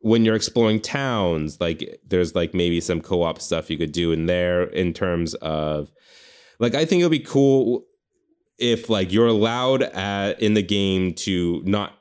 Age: 20-39